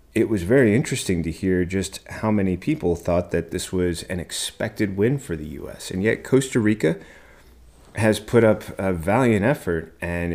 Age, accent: 30-49, American